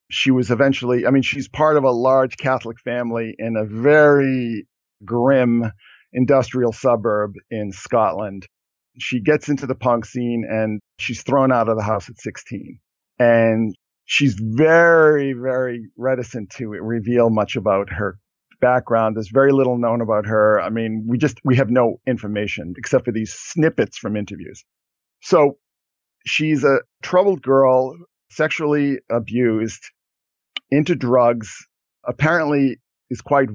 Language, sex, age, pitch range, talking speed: English, male, 50-69, 110-135 Hz, 140 wpm